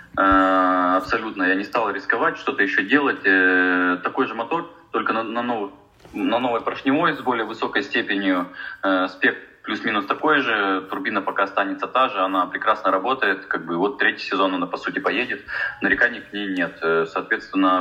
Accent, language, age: native, Russian, 20-39